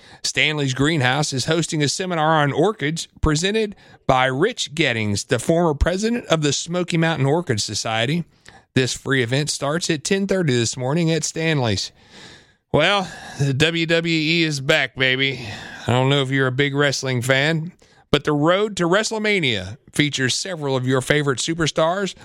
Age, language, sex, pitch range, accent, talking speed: 40-59, English, male, 135-175 Hz, American, 155 wpm